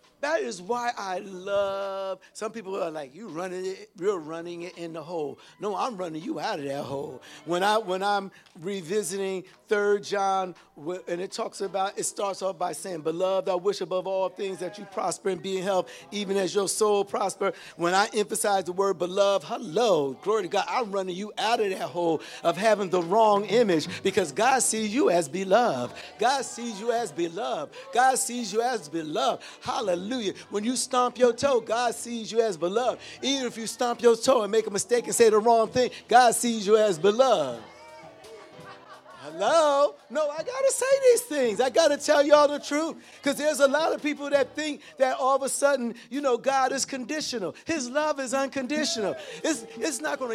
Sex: male